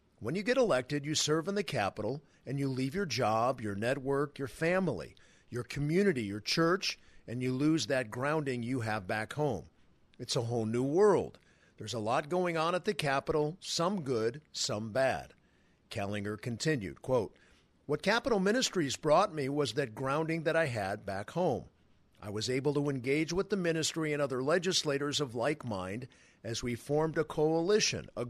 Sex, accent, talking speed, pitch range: male, American, 180 wpm, 120-155 Hz